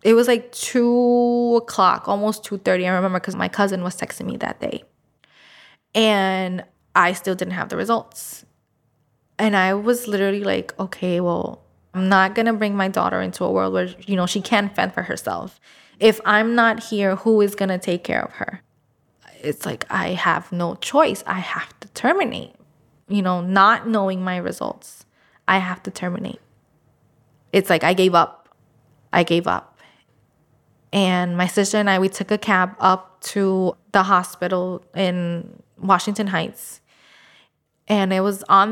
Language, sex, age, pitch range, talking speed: English, female, 20-39, 180-210 Hz, 170 wpm